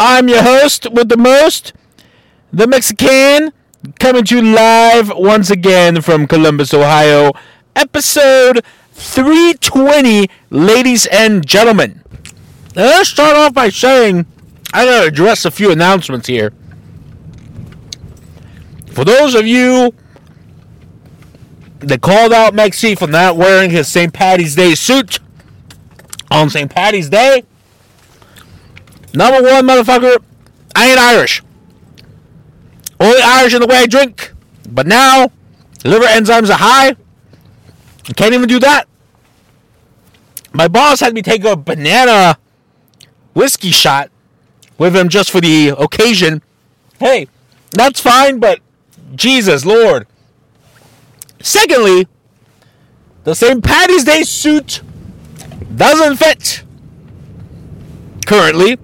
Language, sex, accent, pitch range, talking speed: English, male, American, 150-255 Hz, 110 wpm